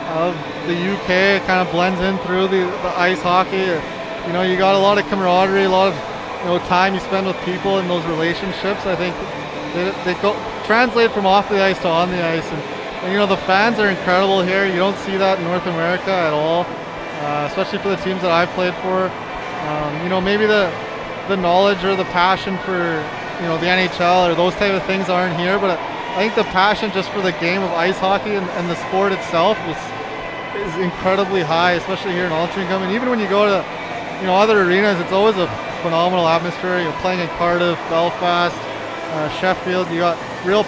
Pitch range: 175-200 Hz